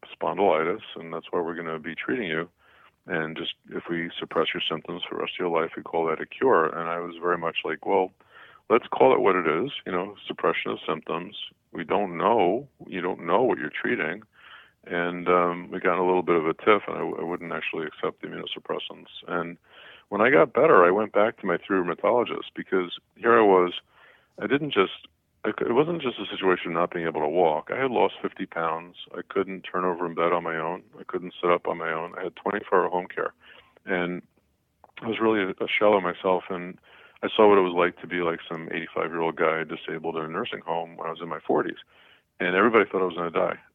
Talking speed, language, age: 235 wpm, English, 50-69